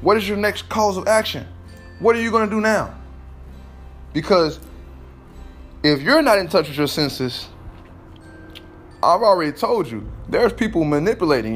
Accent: American